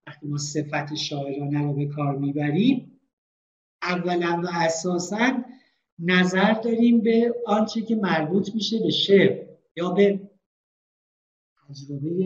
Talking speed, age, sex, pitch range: 115 wpm, 50-69, male, 145-195 Hz